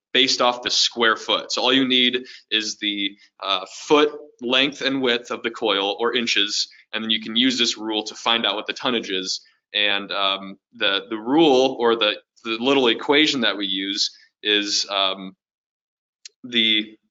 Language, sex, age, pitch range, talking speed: English, male, 20-39, 110-130 Hz, 180 wpm